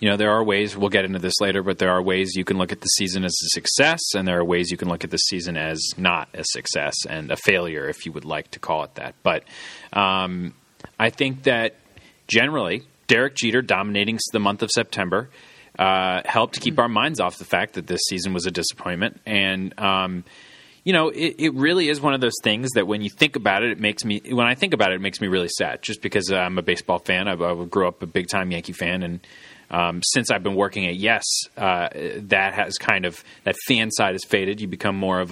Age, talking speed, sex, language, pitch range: 30-49, 245 wpm, male, English, 90-105 Hz